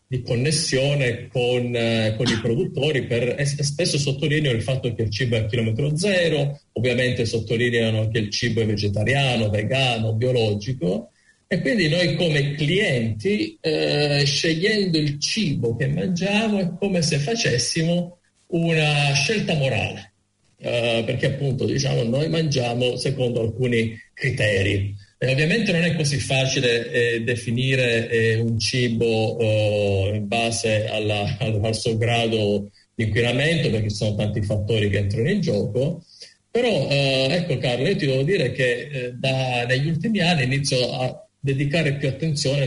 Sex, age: male, 40-59